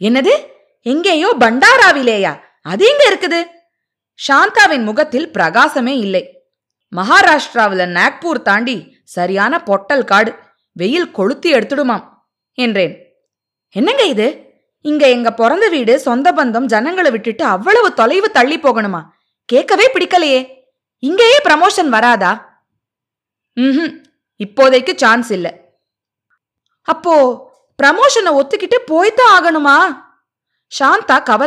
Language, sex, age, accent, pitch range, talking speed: Tamil, female, 20-39, native, 225-320 Hz, 85 wpm